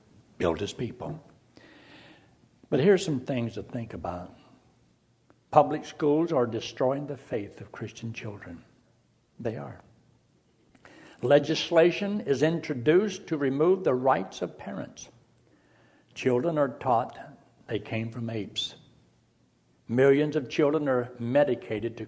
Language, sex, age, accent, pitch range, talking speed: English, male, 60-79, American, 115-145 Hz, 115 wpm